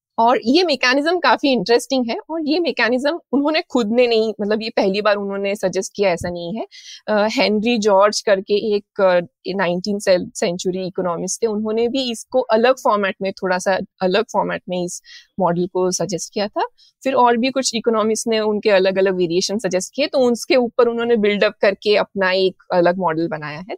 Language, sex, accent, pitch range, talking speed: Hindi, female, native, 195-260 Hz, 185 wpm